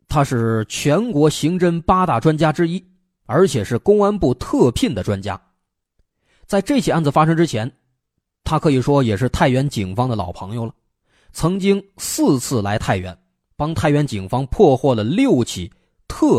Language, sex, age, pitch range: Chinese, male, 20-39, 110-165 Hz